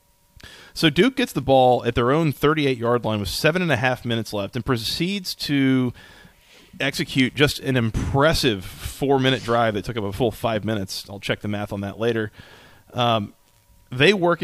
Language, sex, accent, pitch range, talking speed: English, male, American, 115-150 Hz, 180 wpm